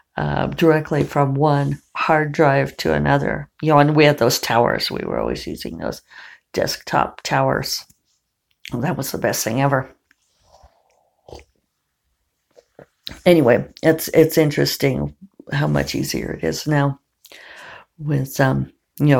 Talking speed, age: 130 wpm, 50-69